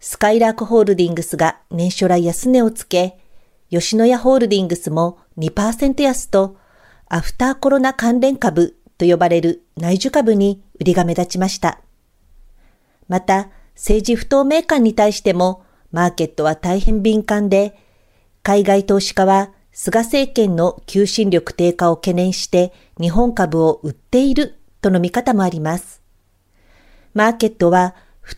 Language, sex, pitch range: Japanese, female, 175-225 Hz